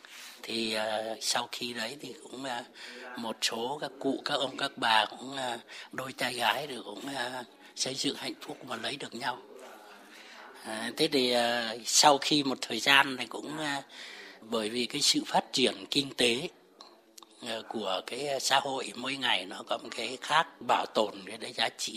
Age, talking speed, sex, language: 60-79, 190 wpm, male, Vietnamese